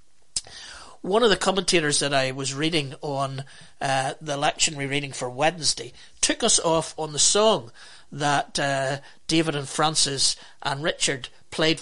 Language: English